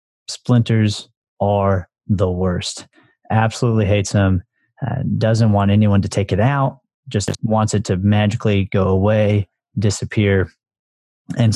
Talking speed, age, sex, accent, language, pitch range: 120 wpm, 30-49, male, American, English, 95-110 Hz